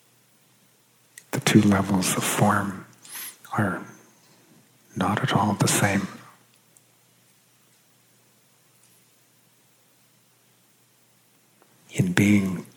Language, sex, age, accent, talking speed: English, male, 50-69, American, 60 wpm